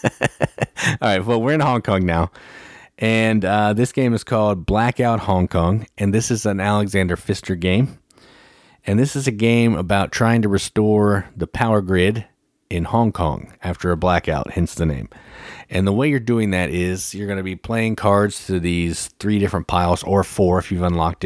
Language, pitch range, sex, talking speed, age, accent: English, 85-105 Hz, male, 190 wpm, 30-49, American